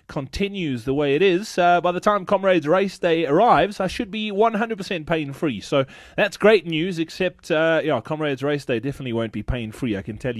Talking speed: 210 wpm